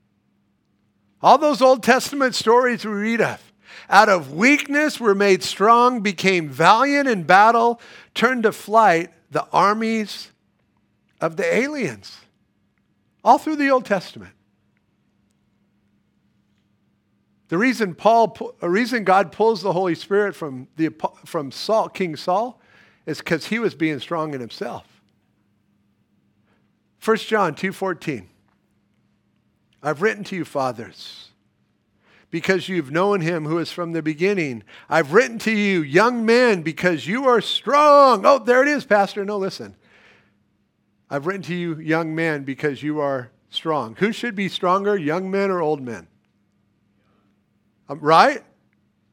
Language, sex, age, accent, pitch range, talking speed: English, male, 50-69, American, 155-225 Hz, 135 wpm